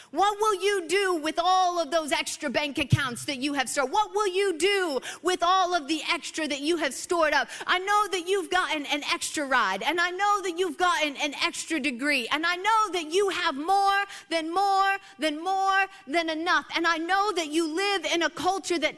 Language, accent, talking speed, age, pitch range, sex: English, American, 220 wpm, 30-49, 300-370 Hz, female